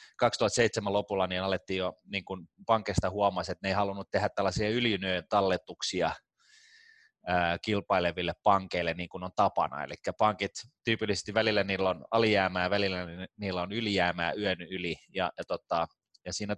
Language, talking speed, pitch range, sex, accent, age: Finnish, 145 wpm, 90-120 Hz, male, native, 20-39